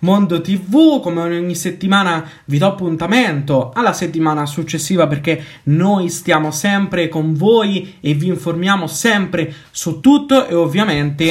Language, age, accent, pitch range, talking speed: Italian, 20-39, native, 130-170 Hz, 135 wpm